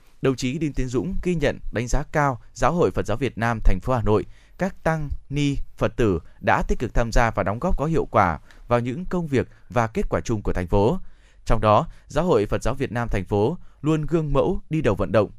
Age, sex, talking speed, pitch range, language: 20-39, male, 250 wpm, 105-140 Hz, Vietnamese